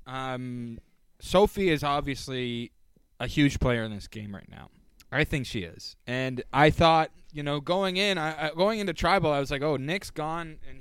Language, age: English, 20-39